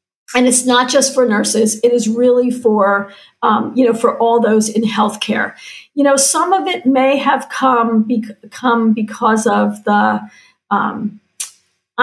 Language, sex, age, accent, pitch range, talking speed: English, female, 50-69, American, 215-240 Hz, 160 wpm